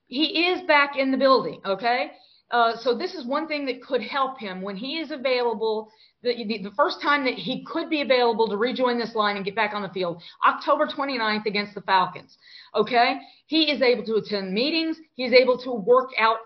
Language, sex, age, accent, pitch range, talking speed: English, female, 40-59, American, 225-275 Hz, 210 wpm